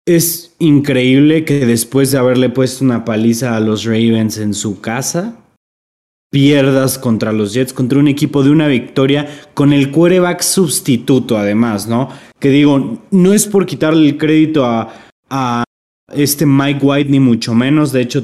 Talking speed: 160 wpm